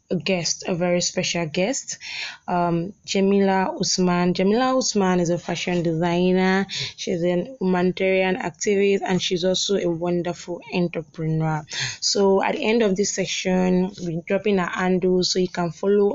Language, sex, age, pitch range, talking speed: English, female, 20-39, 175-195 Hz, 150 wpm